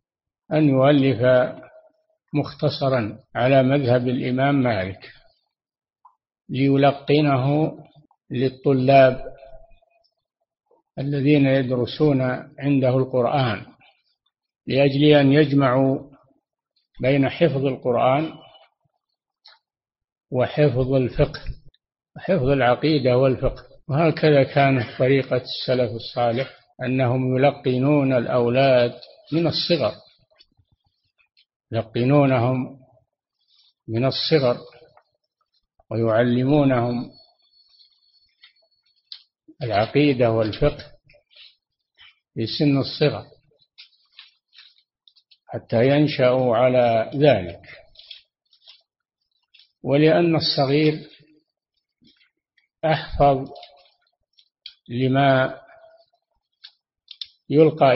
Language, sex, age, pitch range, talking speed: Arabic, male, 60-79, 125-150 Hz, 55 wpm